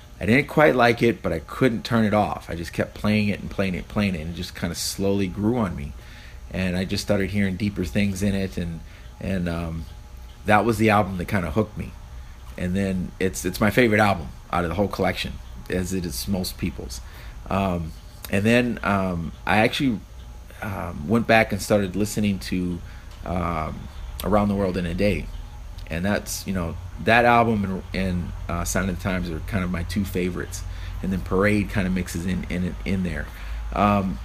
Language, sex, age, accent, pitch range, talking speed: English, male, 30-49, American, 85-105 Hz, 205 wpm